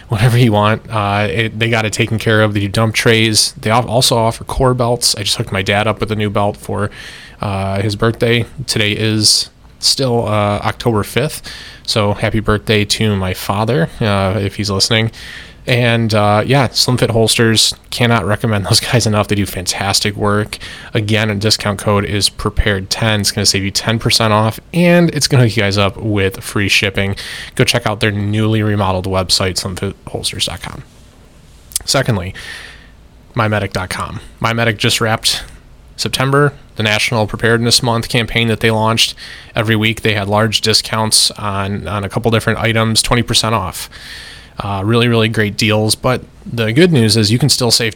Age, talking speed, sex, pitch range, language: 20-39, 175 wpm, male, 105-115 Hz, English